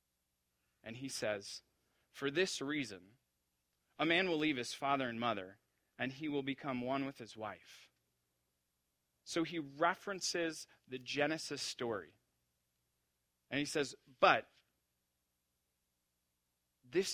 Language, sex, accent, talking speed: English, male, American, 115 wpm